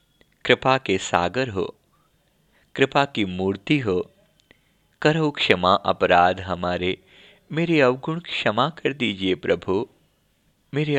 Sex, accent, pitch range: male, native, 105-160 Hz